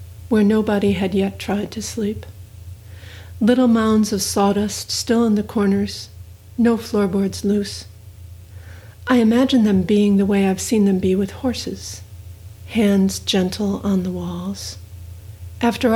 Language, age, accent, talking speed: English, 60-79, American, 135 wpm